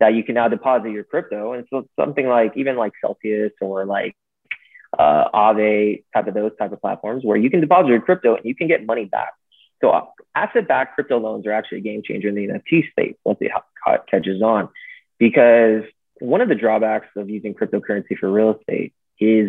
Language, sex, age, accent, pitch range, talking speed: English, male, 20-39, American, 105-120 Hz, 200 wpm